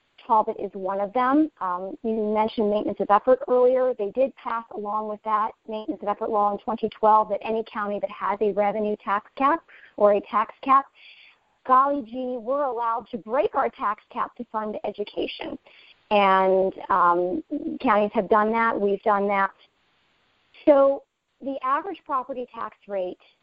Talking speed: 165 wpm